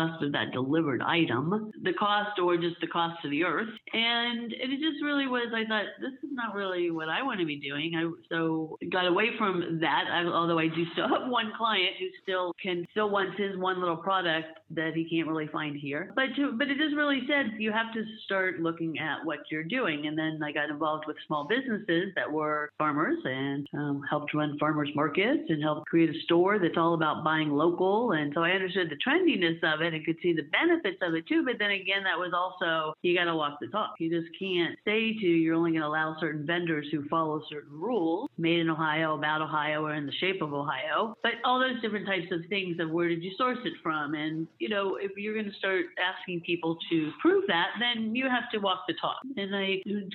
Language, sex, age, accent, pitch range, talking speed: English, female, 50-69, American, 160-210 Hz, 230 wpm